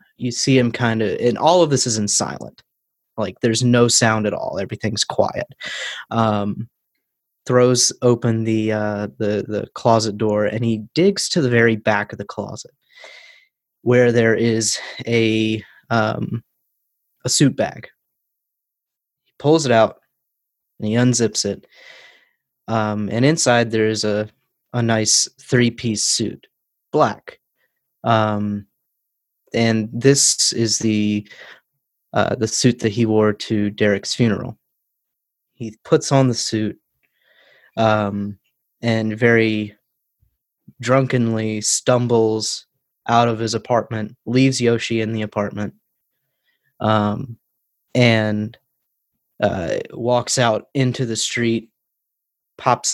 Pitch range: 105-120 Hz